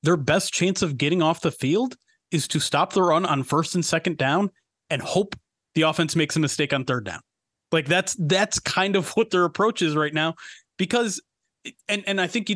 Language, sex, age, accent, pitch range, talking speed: English, male, 30-49, American, 140-190 Hz, 215 wpm